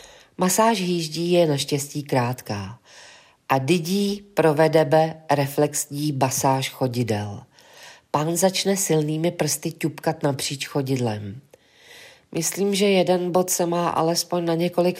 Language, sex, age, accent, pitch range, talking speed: Czech, female, 40-59, native, 145-180 Hz, 110 wpm